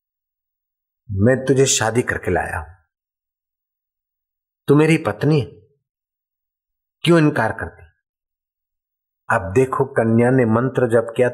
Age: 50-69